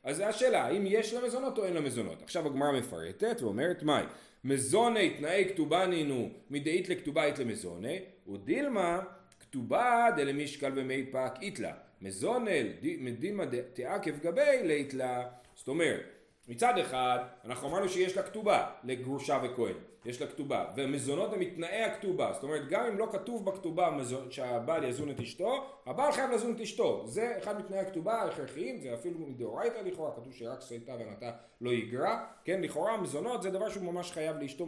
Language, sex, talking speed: Hebrew, male, 155 wpm